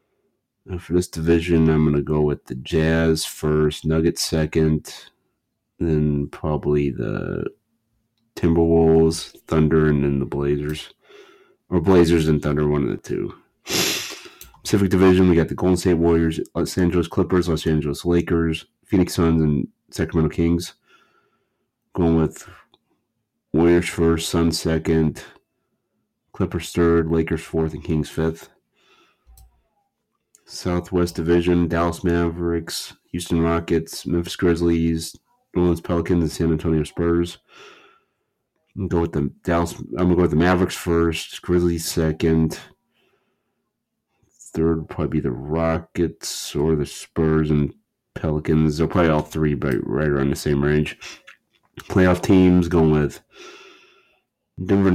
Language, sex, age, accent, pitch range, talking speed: English, male, 30-49, American, 80-85 Hz, 125 wpm